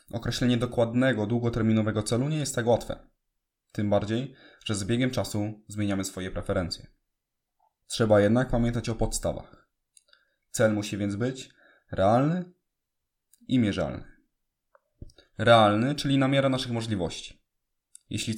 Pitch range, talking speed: 105-125 Hz, 120 wpm